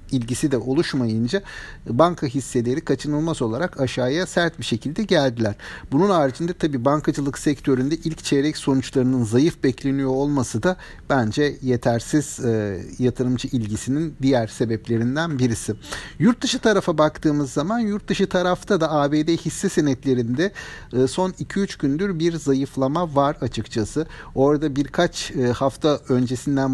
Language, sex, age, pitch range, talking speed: Turkish, male, 60-79, 130-170 Hz, 130 wpm